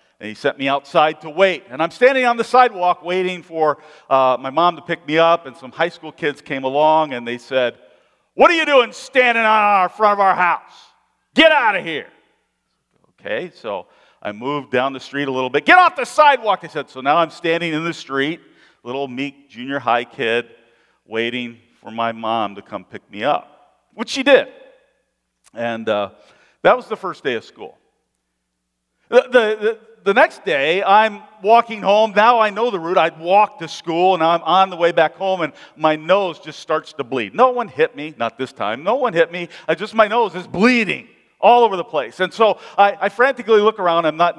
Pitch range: 150-210 Hz